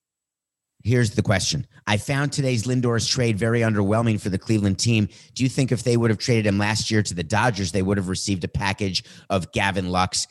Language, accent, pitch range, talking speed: English, American, 95-115 Hz, 215 wpm